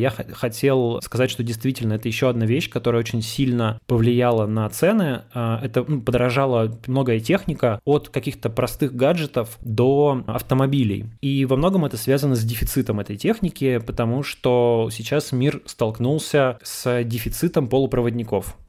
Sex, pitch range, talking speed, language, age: male, 110-135 Hz, 135 wpm, Russian, 20-39